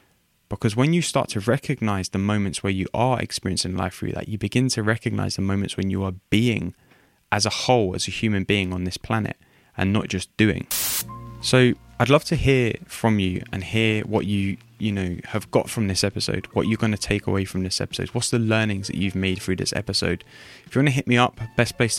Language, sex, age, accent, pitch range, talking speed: English, male, 20-39, British, 95-115 Hz, 230 wpm